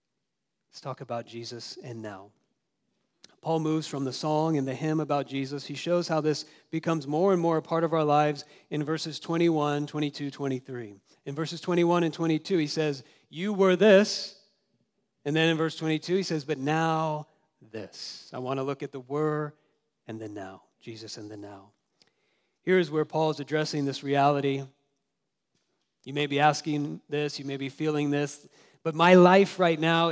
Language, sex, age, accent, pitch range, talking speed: English, male, 40-59, American, 135-160 Hz, 180 wpm